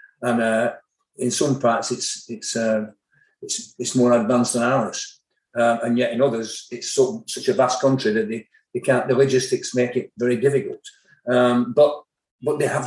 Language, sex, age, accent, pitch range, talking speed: English, male, 50-69, British, 120-145 Hz, 175 wpm